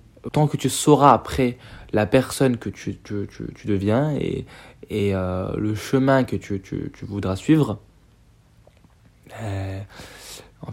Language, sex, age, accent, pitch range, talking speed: French, male, 20-39, French, 105-135 Hz, 145 wpm